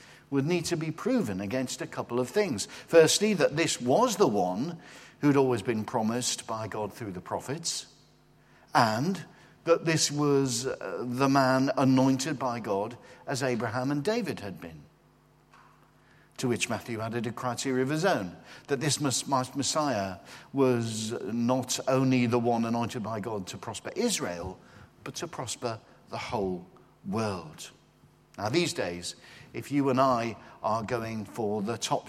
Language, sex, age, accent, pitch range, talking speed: English, male, 60-79, British, 110-140 Hz, 150 wpm